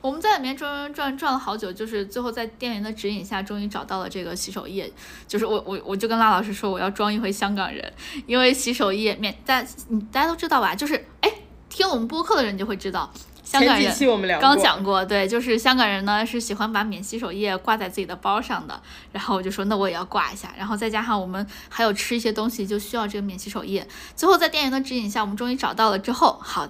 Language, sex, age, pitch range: Chinese, female, 10-29, 200-260 Hz